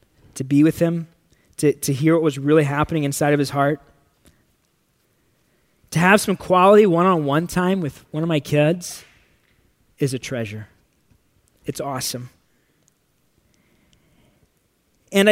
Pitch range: 145-200 Hz